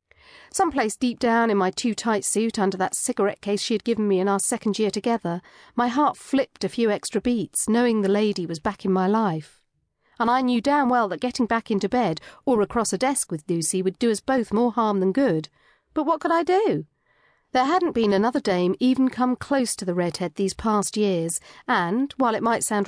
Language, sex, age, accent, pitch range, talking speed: English, female, 40-59, British, 195-260 Hz, 220 wpm